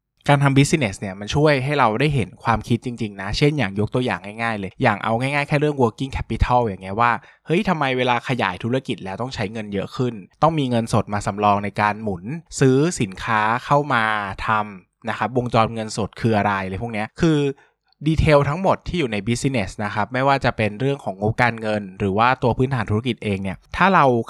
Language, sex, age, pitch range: Thai, male, 20-39, 105-140 Hz